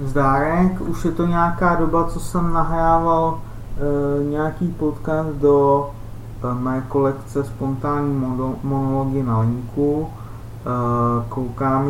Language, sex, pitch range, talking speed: Czech, male, 115-140 Hz, 105 wpm